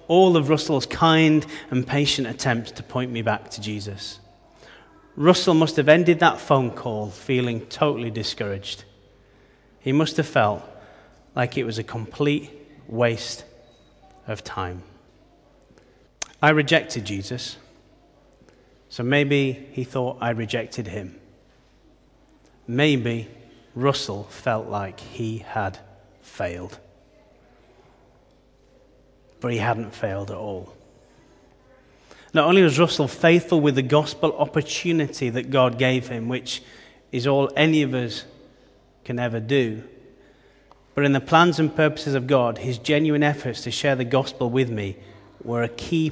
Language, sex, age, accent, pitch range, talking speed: English, male, 30-49, British, 115-145 Hz, 130 wpm